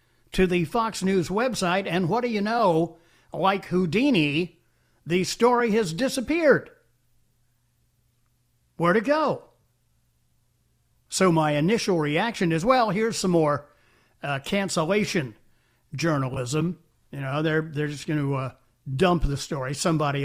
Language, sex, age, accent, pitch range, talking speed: English, male, 60-79, American, 130-200 Hz, 125 wpm